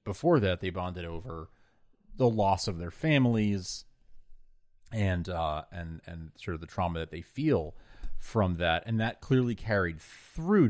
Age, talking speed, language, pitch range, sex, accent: 30-49, 155 wpm, English, 85-110 Hz, male, American